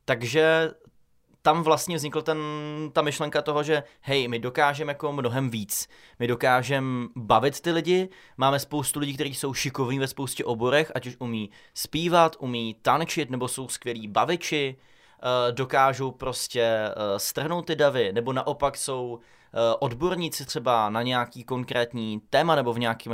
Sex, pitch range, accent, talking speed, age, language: male, 120-145 Hz, native, 145 wpm, 20-39, Czech